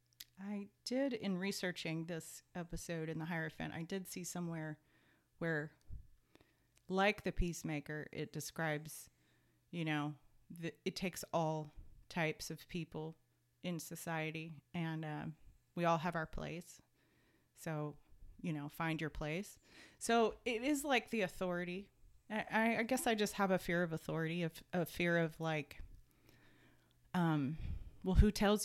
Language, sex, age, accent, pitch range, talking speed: English, female, 30-49, American, 155-190 Hz, 140 wpm